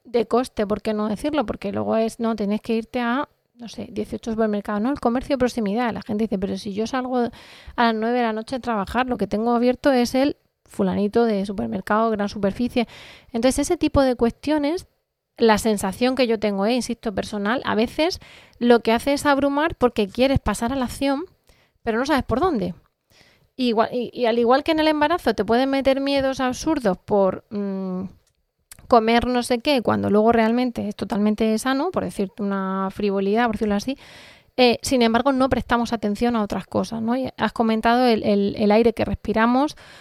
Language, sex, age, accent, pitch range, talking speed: Spanish, female, 30-49, Spanish, 210-250 Hz, 200 wpm